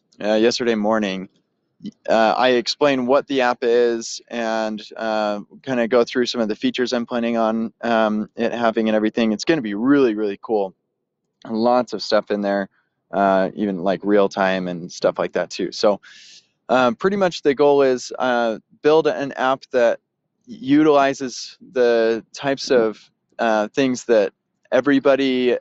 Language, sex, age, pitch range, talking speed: English, male, 20-39, 110-130 Hz, 160 wpm